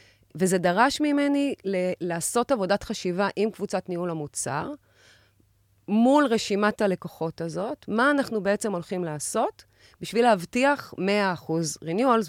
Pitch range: 165-220 Hz